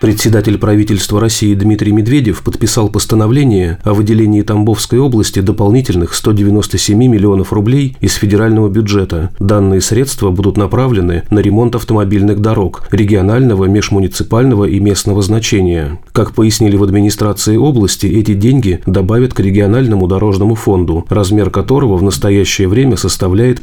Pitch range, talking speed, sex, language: 95-110 Hz, 125 wpm, male, Russian